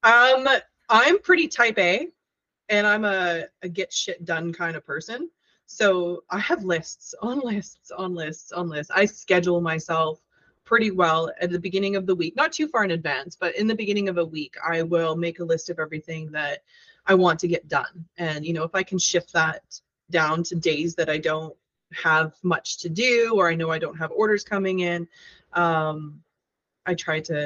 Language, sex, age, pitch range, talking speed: English, female, 20-39, 160-200 Hz, 200 wpm